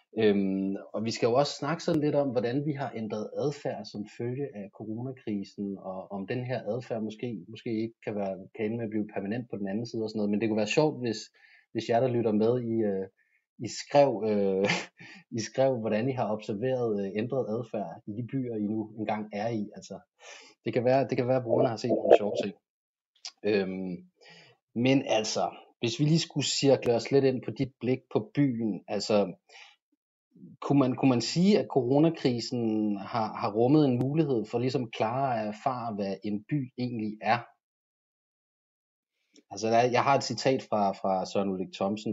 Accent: native